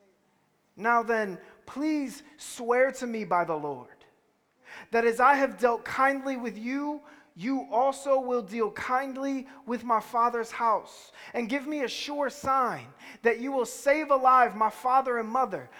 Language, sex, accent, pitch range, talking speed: English, male, American, 190-255 Hz, 155 wpm